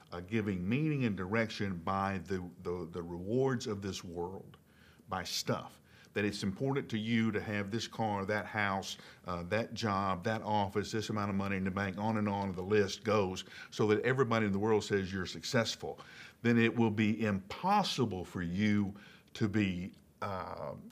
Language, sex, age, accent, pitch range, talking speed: English, male, 50-69, American, 95-110 Hz, 180 wpm